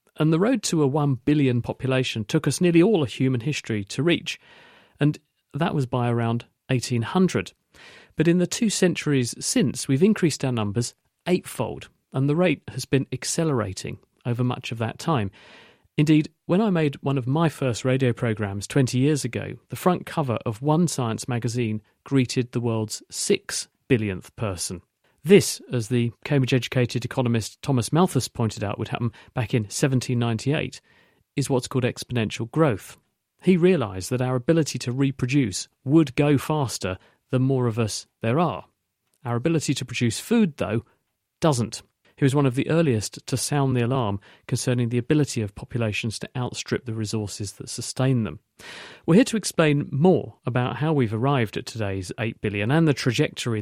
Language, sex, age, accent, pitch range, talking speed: English, male, 40-59, British, 115-145 Hz, 170 wpm